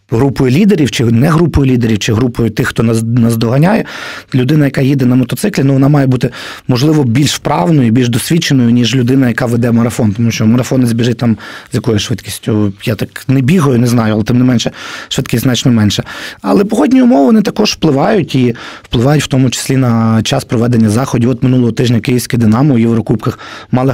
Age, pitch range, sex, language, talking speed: 30-49, 115-145 Hz, male, Ukrainian, 190 wpm